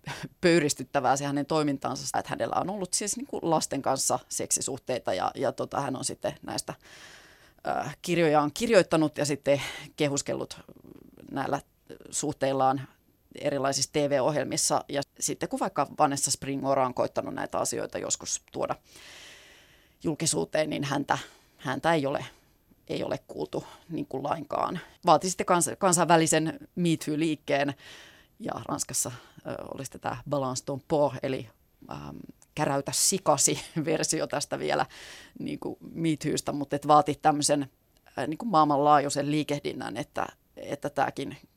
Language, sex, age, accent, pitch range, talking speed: Finnish, female, 30-49, native, 140-160 Hz, 120 wpm